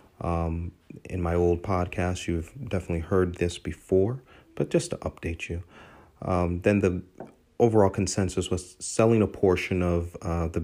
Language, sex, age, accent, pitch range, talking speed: English, male, 30-49, American, 85-100 Hz, 150 wpm